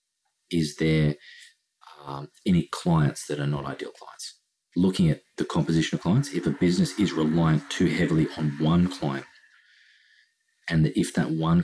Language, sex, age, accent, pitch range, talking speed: English, male, 30-49, Australian, 75-95 Hz, 160 wpm